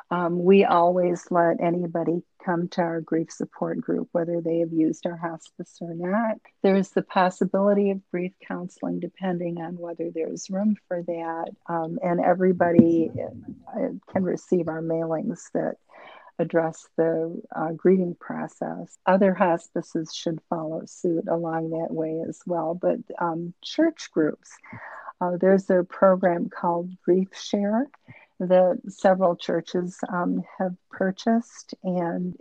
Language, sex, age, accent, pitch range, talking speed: English, female, 50-69, American, 170-195 Hz, 140 wpm